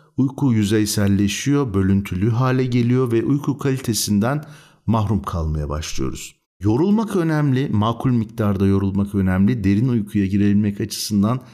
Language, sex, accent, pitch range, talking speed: Turkish, male, native, 90-115 Hz, 110 wpm